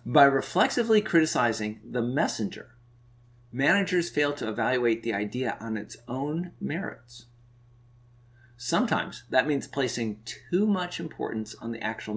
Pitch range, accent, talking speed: 120-155 Hz, American, 125 wpm